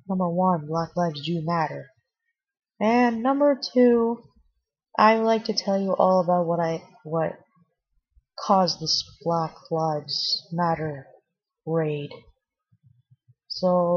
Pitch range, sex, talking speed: 165-240 Hz, female, 110 wpm